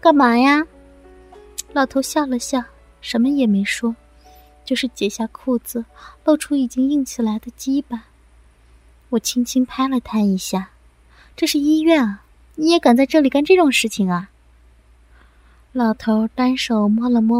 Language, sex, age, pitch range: Chinese, female, 20-39, 210-265 Hz